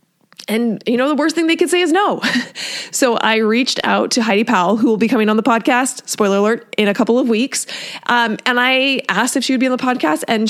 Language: English